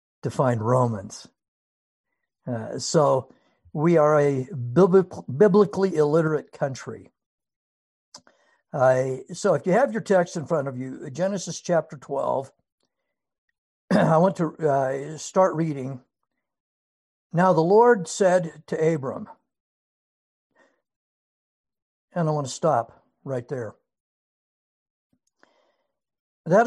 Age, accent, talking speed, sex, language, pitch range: 60-79, American, 100 wpm, male, English, 130-170 Hz